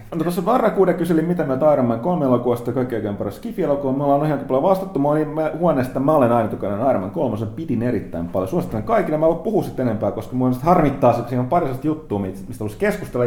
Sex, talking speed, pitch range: male, 200 wpm, 105-135 Hz